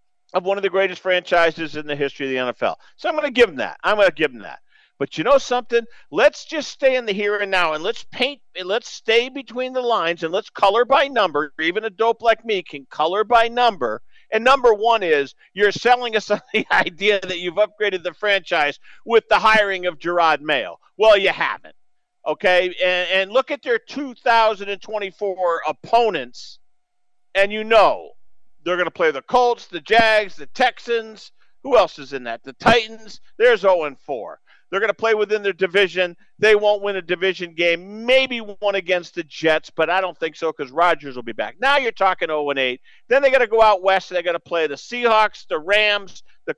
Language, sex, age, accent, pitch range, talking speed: English, male, 50-69, American, 180-245 Hz, 210 wpm